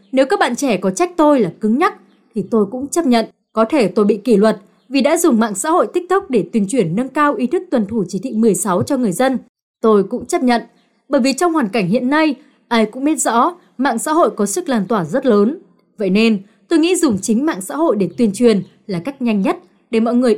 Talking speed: 255 wpm